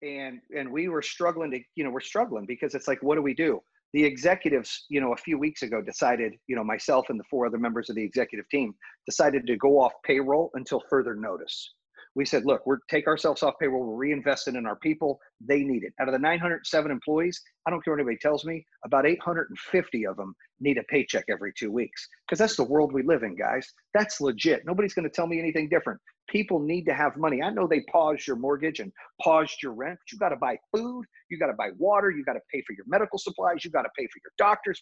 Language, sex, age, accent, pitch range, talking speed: English, male, 40-59, American, 140-190 Hz, 245 wpm